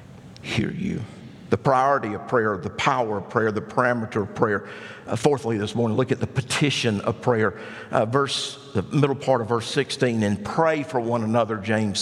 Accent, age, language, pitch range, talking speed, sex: American, 50-69, English, 120-185 Hz, 190 wpm, male